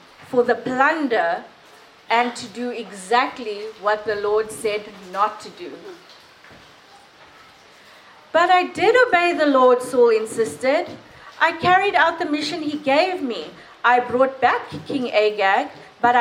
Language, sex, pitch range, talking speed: English, female, 210-270 Hz, 135 wpm